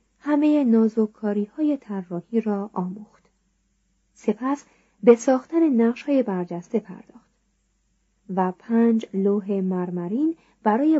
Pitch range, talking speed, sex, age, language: 195-245 Hz, 95 wpm, female, 30-49, Persian